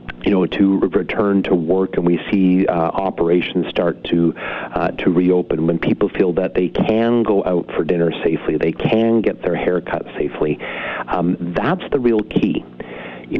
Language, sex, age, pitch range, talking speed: English, male, 40-59, 85-105 Hz, 185 wpm